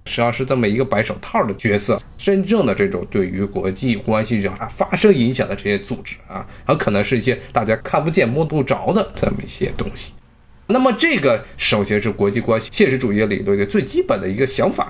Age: 20-39